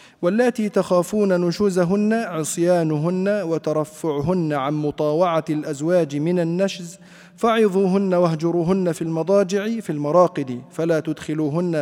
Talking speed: 90 wpm